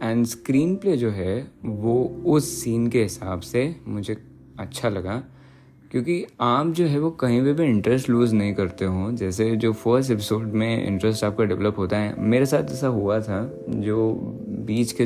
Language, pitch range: Hindi, 95-120 Hz